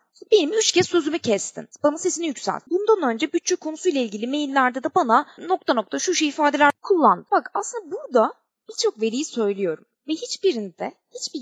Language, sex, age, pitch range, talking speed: Turkish, female, 20-39, 235-350 Hz, 165 wpm